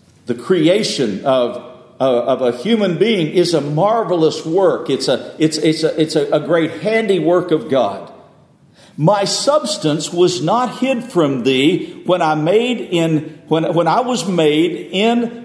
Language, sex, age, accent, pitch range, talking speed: English, male, 50-69, American, 135-195 Hz, 155 wpm